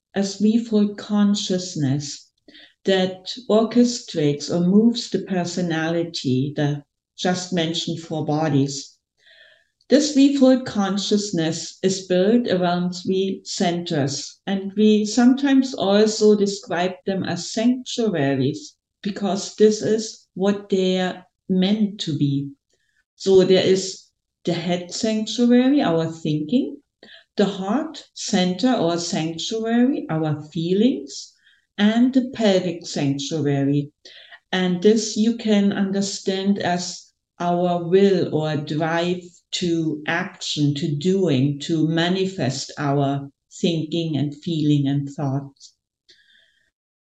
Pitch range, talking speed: 160-210 Hz, 100 wpm